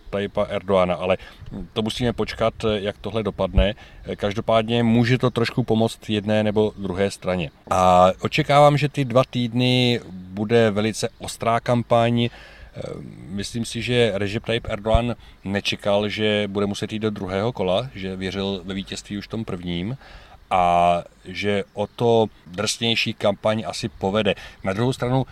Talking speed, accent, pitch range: 140 wpm, native, 100-115 Hz